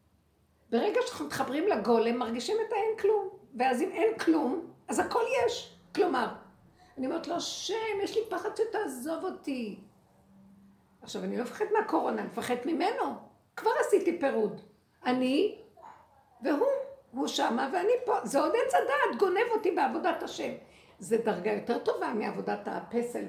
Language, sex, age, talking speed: Hebrew, female, 50-69, 145 wpm